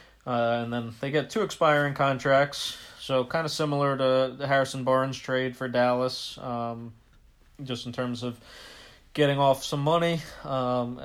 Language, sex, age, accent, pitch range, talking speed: English, male, 30-49, American, 120-130 Hz, 150 wpm